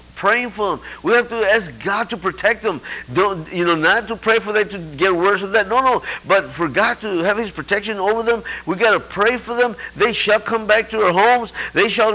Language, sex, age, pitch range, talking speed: English, male, 50-69, 185-245 Hz, 240 wpm